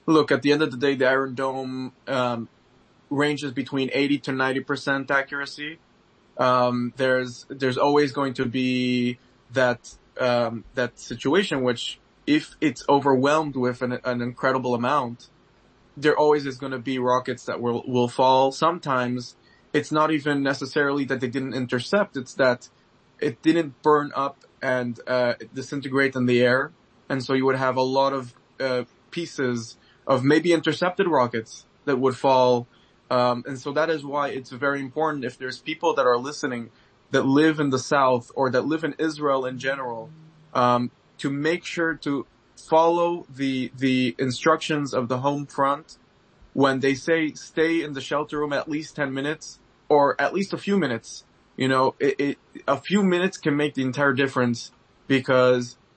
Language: English